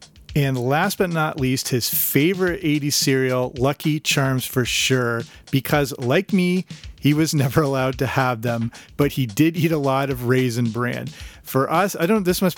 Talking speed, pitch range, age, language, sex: 185 wpm, 130-155 Hz, 40-59, English, male